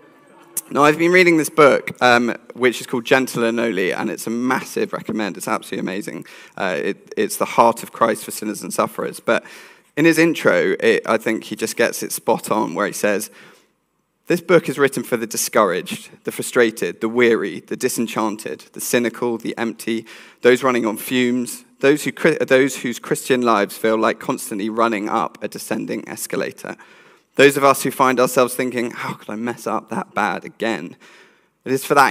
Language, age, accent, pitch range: English, 20-39, British, 115-140 Hz